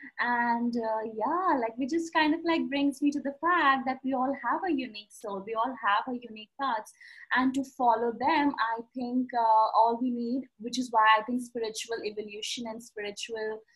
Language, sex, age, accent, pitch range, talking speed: English, female, 20-39, Indian, 215-265 Hz, 200 wpm